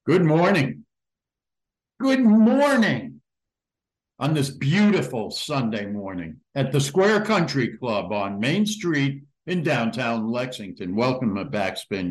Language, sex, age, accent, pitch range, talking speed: English, male, 60-79, American, 115-155 Hz, 115 wpm